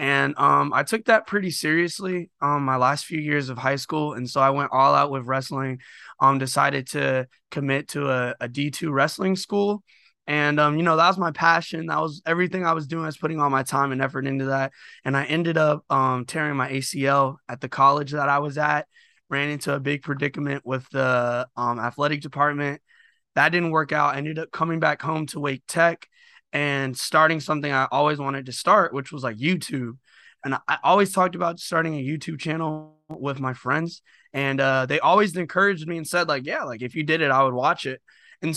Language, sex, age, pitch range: English, male, 20-39, 135-165 Hz